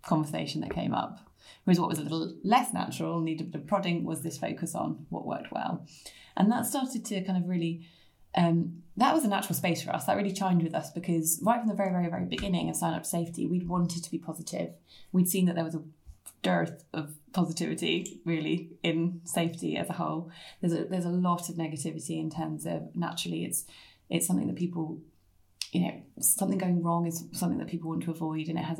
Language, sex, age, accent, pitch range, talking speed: English, female, 20-39, British, 165-185 Hz, 220 wpm